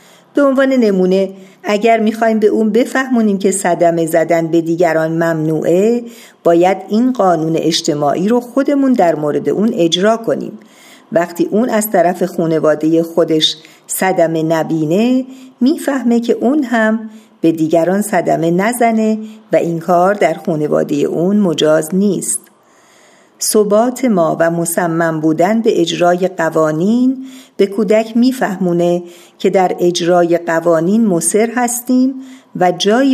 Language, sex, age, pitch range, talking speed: Persian, female, 50-69, 170-225 Hz, 125 wpm